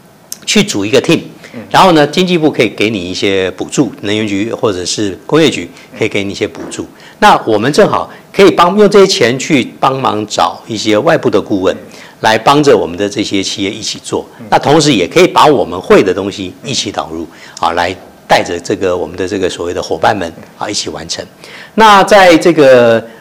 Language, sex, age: Chinese, male, 50-69